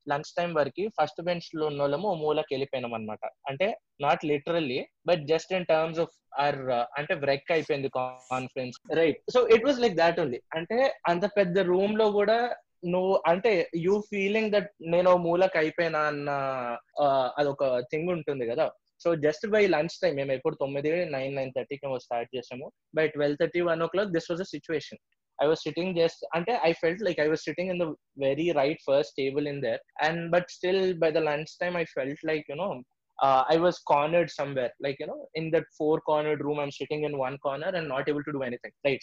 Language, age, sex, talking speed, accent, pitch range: Telugu, 20-39, male, 190 wpm, native, 135-175 Hz